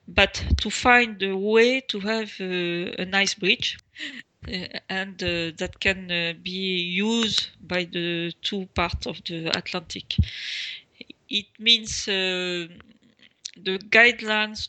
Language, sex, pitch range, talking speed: English, female, 180-215 Hz, 125 wpm